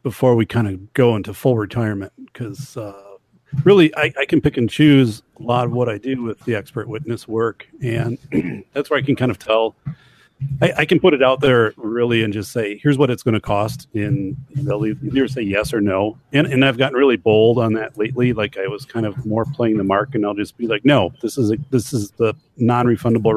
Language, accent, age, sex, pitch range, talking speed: English, American, 40-59, male, 110-135 Hz, 235 wpm